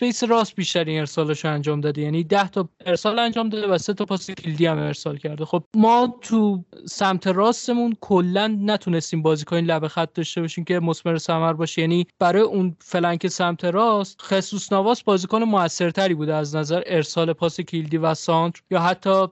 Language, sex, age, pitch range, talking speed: Persian, male, 20-39, 165-205 Hz, 175 wpm